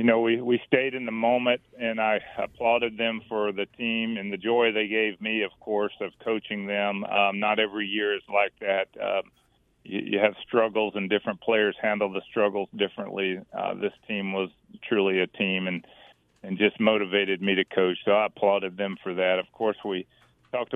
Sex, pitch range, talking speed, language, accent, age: male, 95-105 Hz, 200 wpm, English, American, 40-59